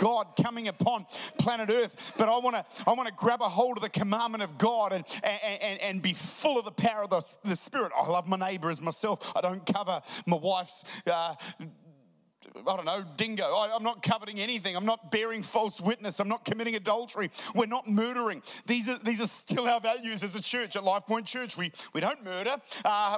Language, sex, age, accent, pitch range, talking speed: English, male, 30-49, Australian, 200-245 Hz, 230 wpm